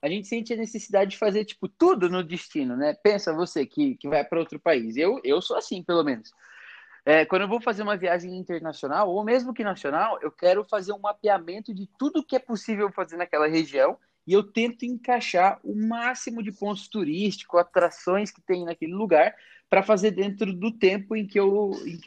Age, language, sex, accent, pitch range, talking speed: 20-39, Portuguese, male, Brazilian, 175-220 Hz, 200 wpm